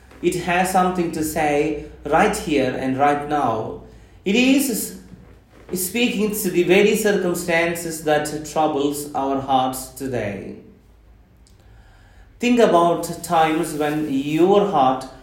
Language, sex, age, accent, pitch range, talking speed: English, male, 30-49, Indian, 125-175 Hz, 110 wpm